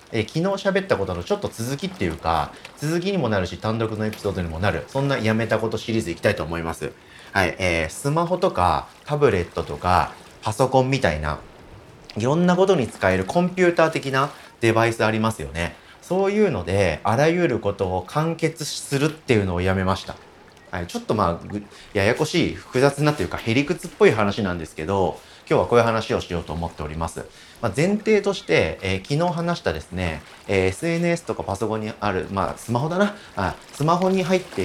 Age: 30-49